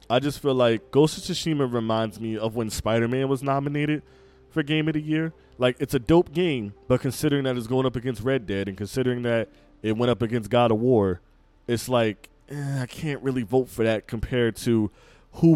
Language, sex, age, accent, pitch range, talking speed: English, male, 20-39, American, 110-140 Hz, 210 wpm